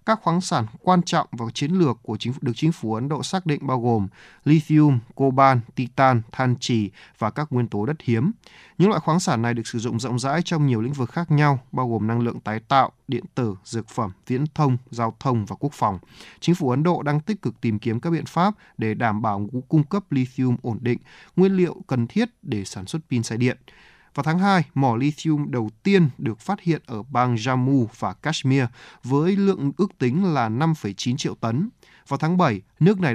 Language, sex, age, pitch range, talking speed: Vietnamese, male, 20-39, 120-160 Hz, 220 wpm